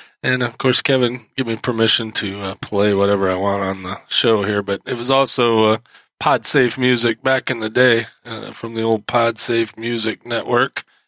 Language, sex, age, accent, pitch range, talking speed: English, male, 20-39, American, 110-125 Hz, 200 wpm